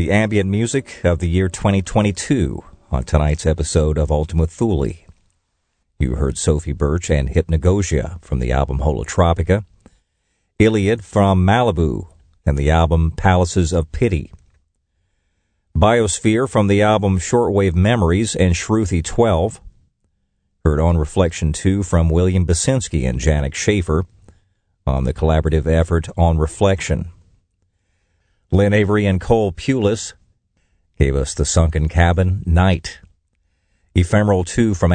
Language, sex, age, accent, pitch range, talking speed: English, male, 50-69, American, 80-100 Hz, 120 wpm